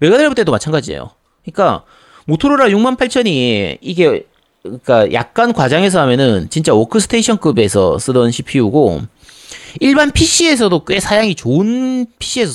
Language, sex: Korean, male